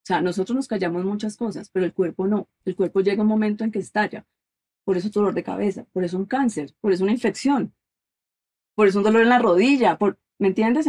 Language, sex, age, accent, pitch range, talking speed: Spanish, female, 30-49, Colombian, 180-220 Hz, 235 wpm